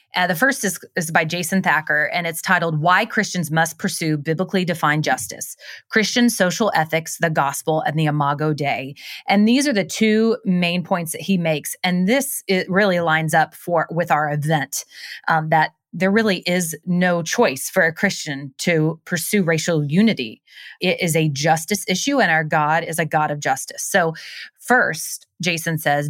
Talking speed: 180 wpm